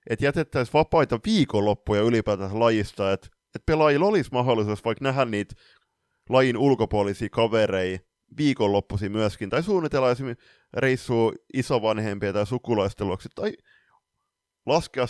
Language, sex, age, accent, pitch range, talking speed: Finnish, male, 30-49, native, 100-125 Hz, 110 wpm